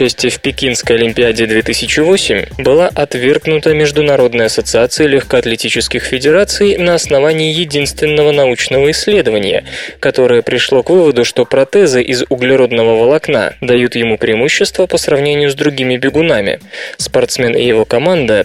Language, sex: Russian, male